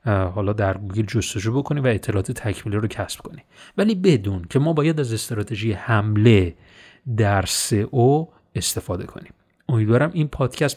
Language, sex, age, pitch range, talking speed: Persian, male, 30-49, 110-135 Hz, 145 wpm